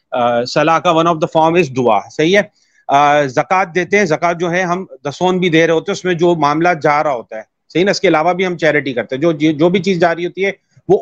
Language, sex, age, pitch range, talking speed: Urdu, male, 30-49, 155-180 Hz, 270 wpm